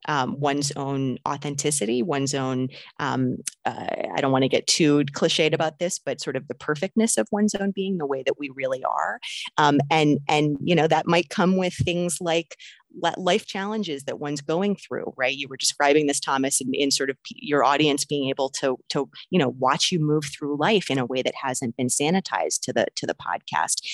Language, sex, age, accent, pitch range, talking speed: English, female, 30-49, American, 135-165 Hz, 210 wpm